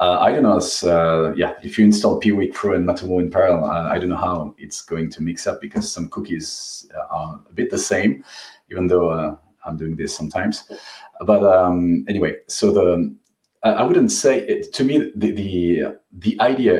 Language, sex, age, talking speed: English, male, 40-59, 200 wpm